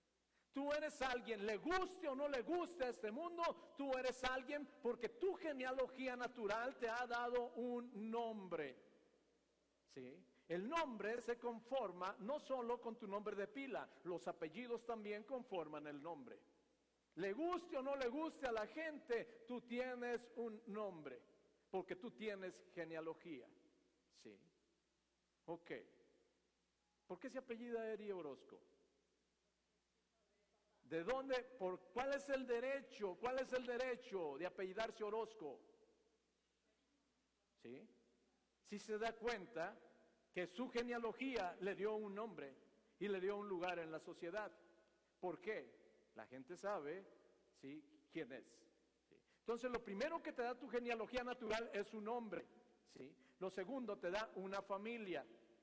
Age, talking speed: 50-69, 140 wpm